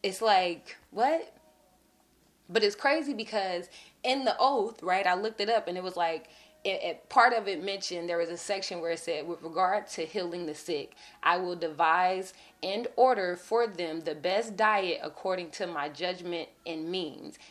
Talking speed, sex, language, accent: 185 wpm, female, English, American